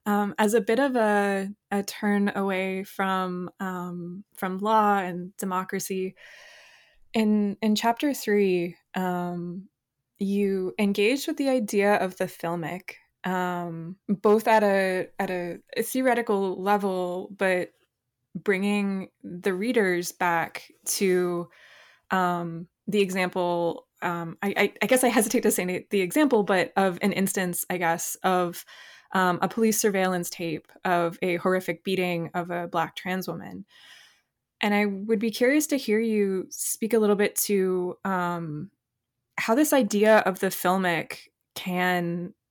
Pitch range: 175-205 Hz